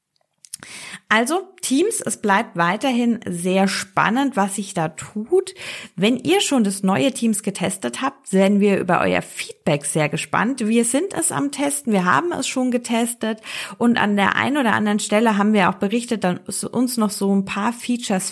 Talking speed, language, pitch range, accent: 175 wpm, German, 190-240 Hz, German